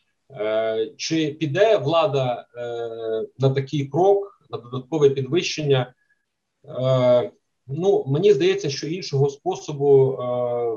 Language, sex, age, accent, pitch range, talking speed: Ukrainian, male, 30-49, native, 135-165 Hz, 100 wpm